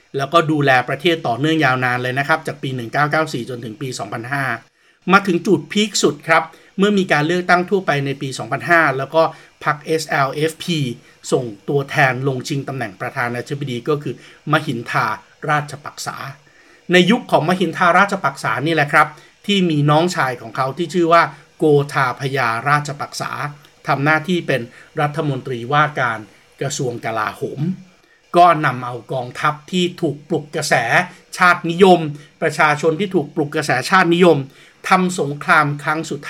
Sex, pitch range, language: male, 140-170 Hz, Thai